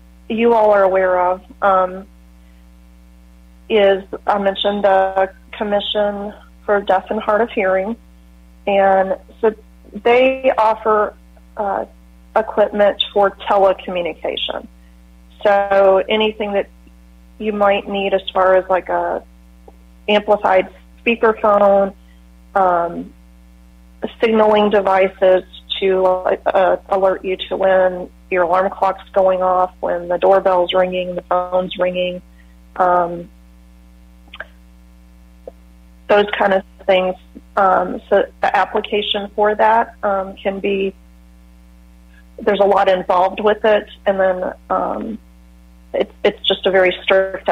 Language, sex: English, female